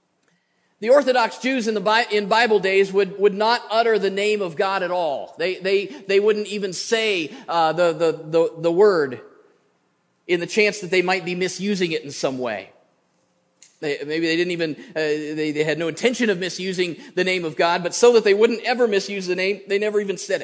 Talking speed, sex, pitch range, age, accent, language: 215 wpm, male, 175-215 Hz, 40-59, American, English